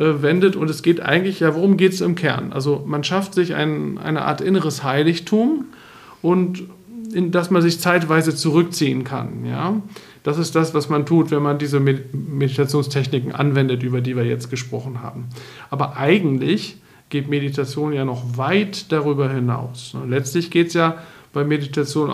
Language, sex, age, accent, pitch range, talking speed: German, male, 50-69, German, 140-170 Hz, 165 wpm